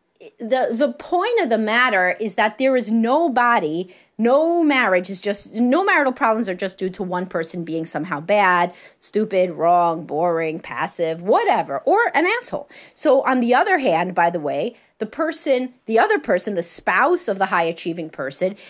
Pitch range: 180-255 Hz